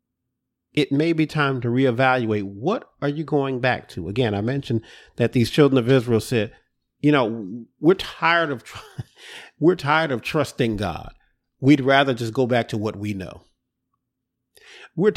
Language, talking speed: English, 160 wpm